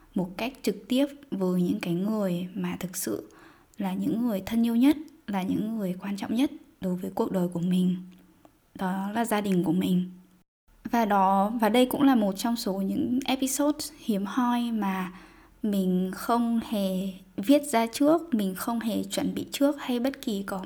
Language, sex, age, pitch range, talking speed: Vietnamese, female, 10-29, 180-245 Hz, 190 wpm